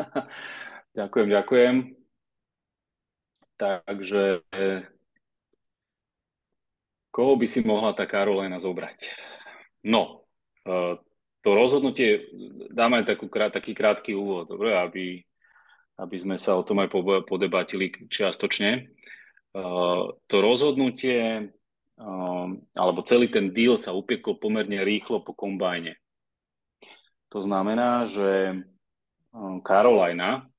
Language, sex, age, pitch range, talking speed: Slovak, male, 30-49, 90-100 Hz, 85 wpm